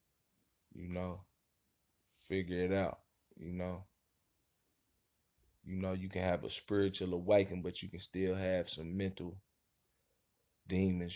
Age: 20-39